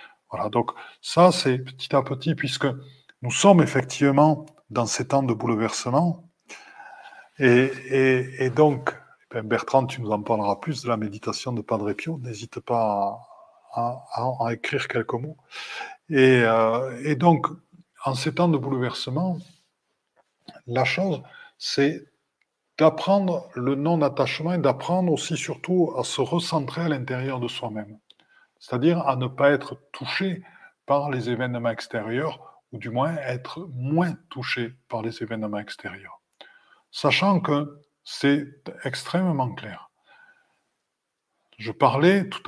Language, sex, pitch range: French, male, 120-160 Hz